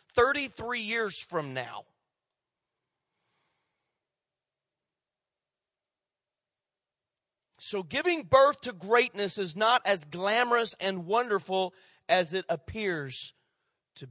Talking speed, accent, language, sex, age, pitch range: 80 wpm, American, English, male, 40-59, 195-260 Hz